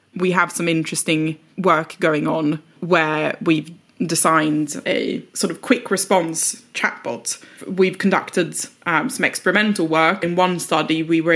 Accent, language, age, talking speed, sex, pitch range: British, English, 20-39, 145 wpm, female, 160-190 Hz